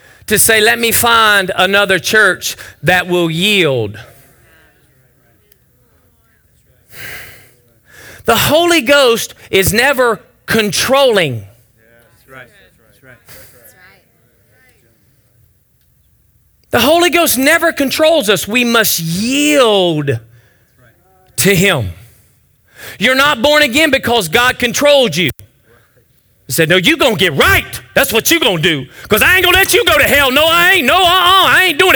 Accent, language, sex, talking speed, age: American, English, male, 125 wpm, 40-59